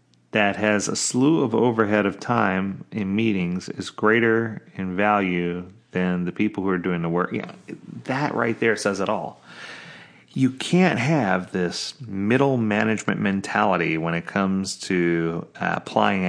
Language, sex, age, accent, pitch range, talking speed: English, male, 30-49, American, 90-110 Hz, 150 wpm